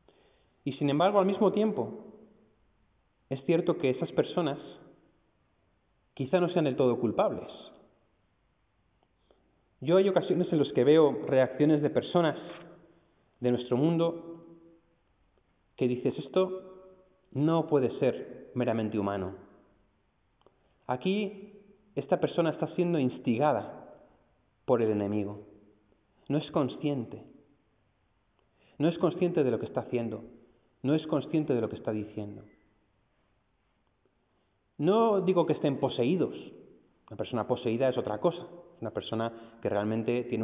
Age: 30-49